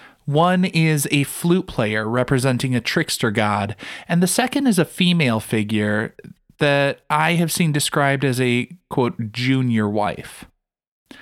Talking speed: 140 wpm